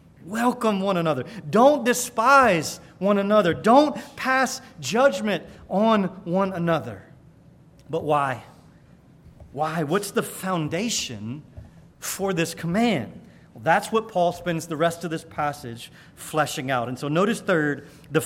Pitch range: 150-205 Hz